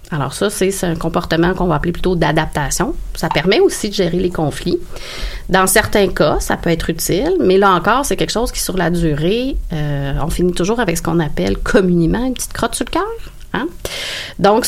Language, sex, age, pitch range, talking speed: French, female, 30-49, 165-195 Hz, 205 wpm